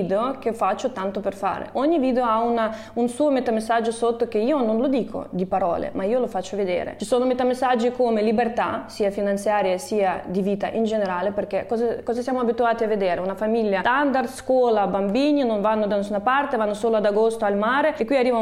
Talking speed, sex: 205 wpm, female